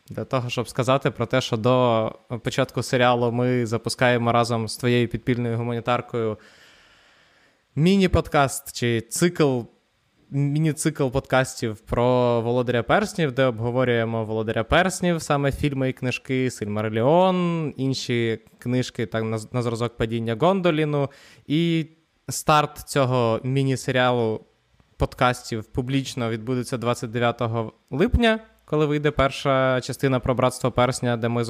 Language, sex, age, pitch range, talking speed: Ukrainian, male, 20-39, 115-140 Hz, 115 wpm